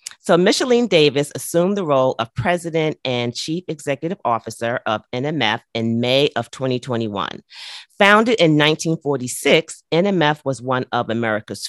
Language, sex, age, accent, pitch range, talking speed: English, female, 40-59, American, 120-165 Hz, 135 wpm